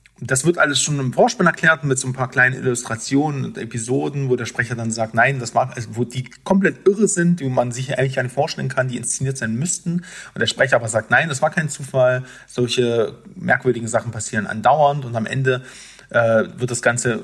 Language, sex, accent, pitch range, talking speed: German, male, German, 120-145 Hz, 215 wpm